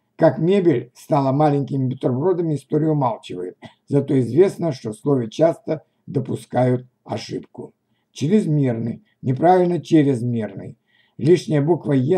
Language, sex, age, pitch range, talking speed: Russian, male, 60-79, 125-160 Hz, 105 wpm